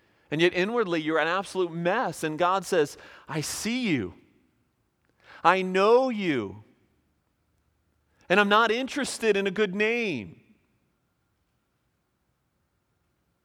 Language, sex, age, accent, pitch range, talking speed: English, male, 40-59, American, 120-180 Hz, 105 wpm